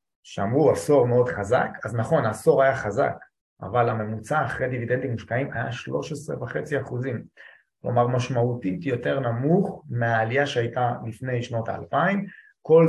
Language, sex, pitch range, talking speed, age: Hebrew, male, 110-140 Hz, 120 wpm, 30-49